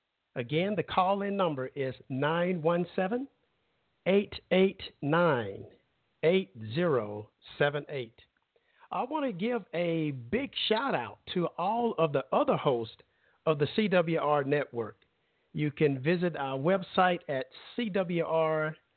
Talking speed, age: 95 wpm, 50-69